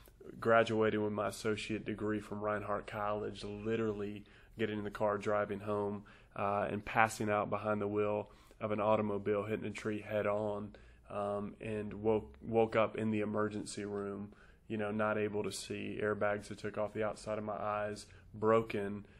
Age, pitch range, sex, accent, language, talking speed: 20-39, 105-110 Hz, male, American, English, 170 wpm